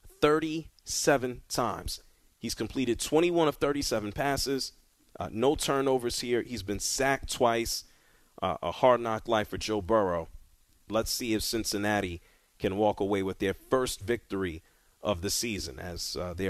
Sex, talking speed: male, 150 wpm